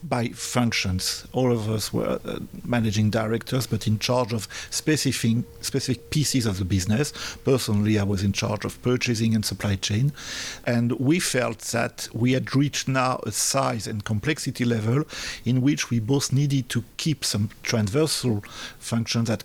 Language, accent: English, French